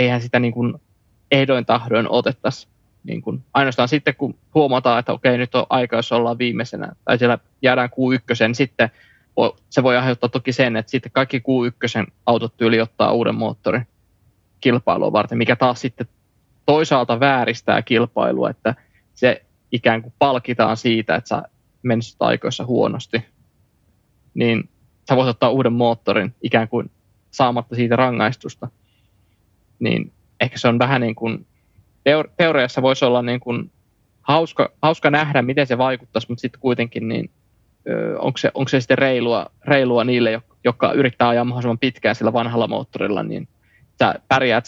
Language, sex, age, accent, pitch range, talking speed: Finnish, male, 20-39, native, 115-130 Hz, 145 wpm